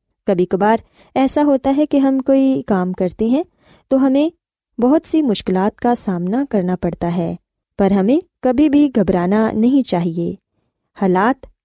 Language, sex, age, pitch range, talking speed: Urdu, female, 20-39, 190-260 Hz, 150 wpm